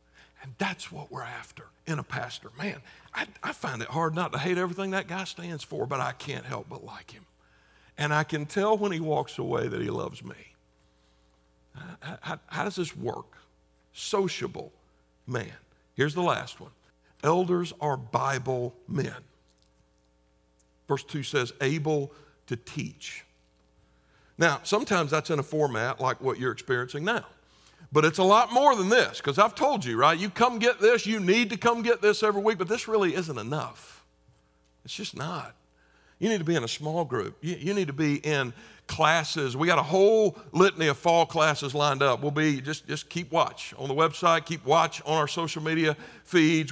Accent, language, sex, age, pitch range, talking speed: American, English, male, 60-79, 135-180 Hz, 190 wpm